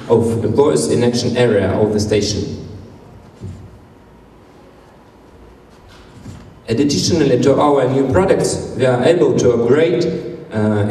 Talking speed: 100 wpm